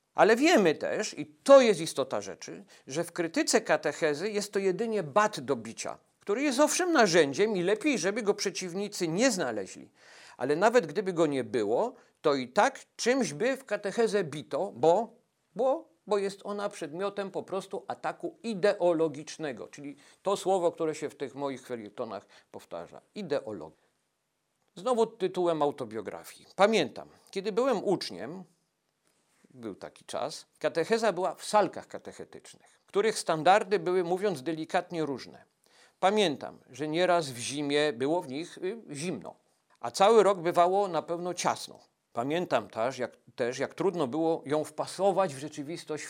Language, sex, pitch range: Polish, male, 155-205 Hz